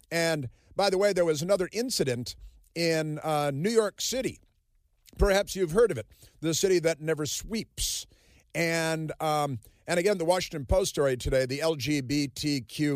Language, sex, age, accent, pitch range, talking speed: English, male, 50-69, American, 140-185 Hz, 155 wpm